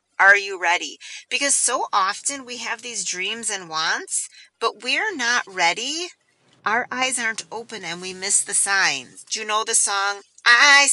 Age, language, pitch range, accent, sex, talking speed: 30-49, English, 195-270 Hz, American, female, 170 wpm